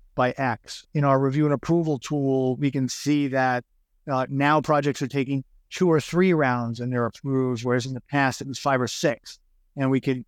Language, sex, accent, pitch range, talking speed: English, male, American, 115-140 Hz, 215 wpm